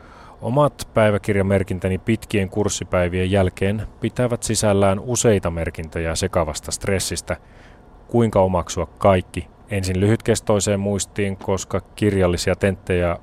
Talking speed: 90 wpm